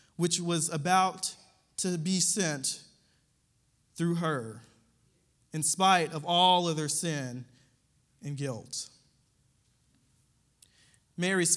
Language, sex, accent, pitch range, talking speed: English, male, American, 135-195 Hz, 95 wpm